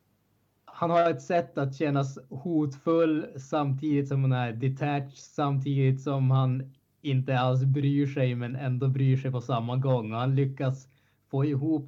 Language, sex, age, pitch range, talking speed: Swedish, male, 20-39, 115-140 Hz, 155 wpm